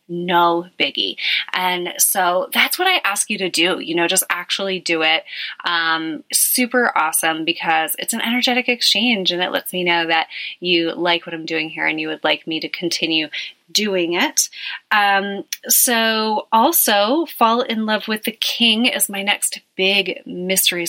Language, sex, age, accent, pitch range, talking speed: English, female, 20-39, American, 165-195 Hz, 170 wpm